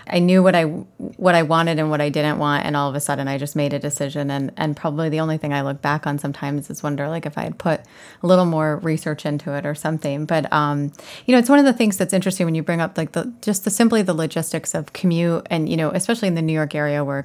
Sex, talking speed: female, 285 wpm